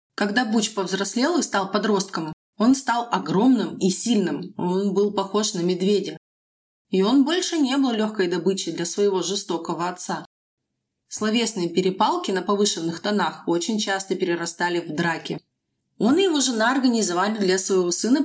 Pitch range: 180-235 Hz